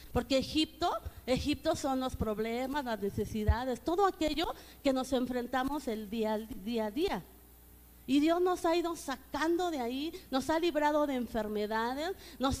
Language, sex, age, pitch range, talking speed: Spanish, female, 40-59, 240-330 Hz, 150 wpm